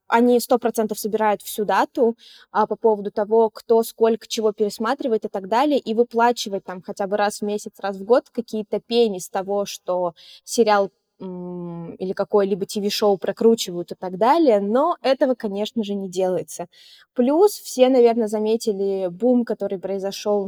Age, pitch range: 20-39, 200-245 Hz